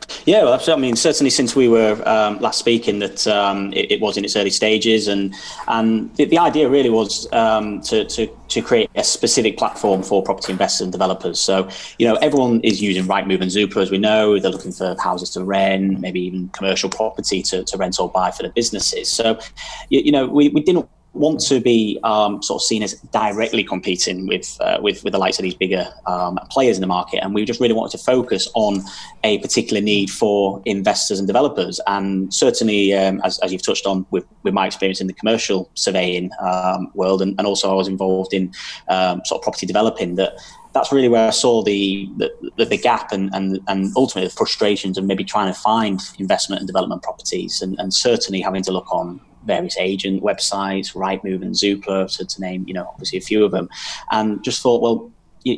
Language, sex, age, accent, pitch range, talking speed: English, male, 20-39, British, 95-110 Hz, 215 wpm